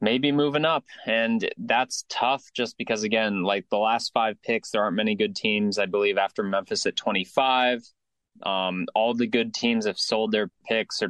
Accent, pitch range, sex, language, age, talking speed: American, 105-130 Hz, male, English, 20-39, 190 wpm